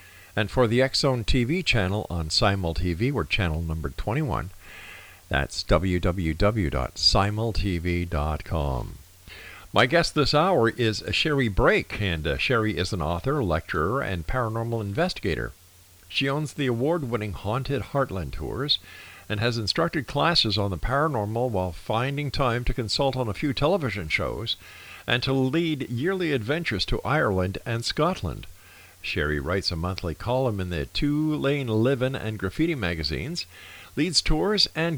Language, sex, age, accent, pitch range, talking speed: English, male, 50-69, American, 90-130 Hz, 135 wpm